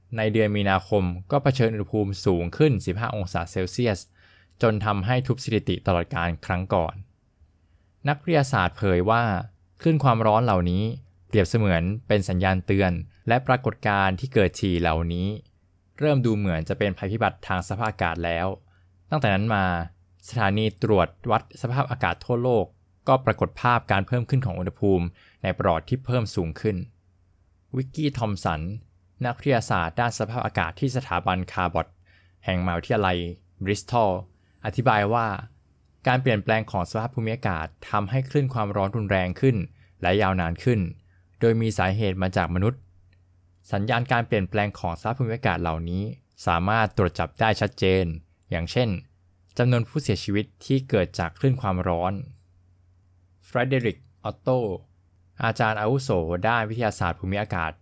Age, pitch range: 20-39, 90-115 Hz